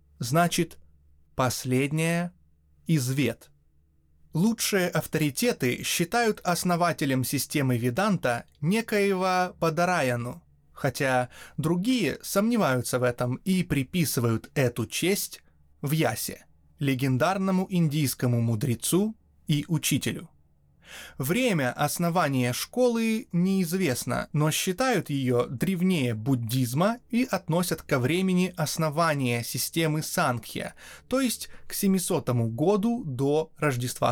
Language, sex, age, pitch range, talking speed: Russian, male, 20-39, 125-185 Hz, 90 wpm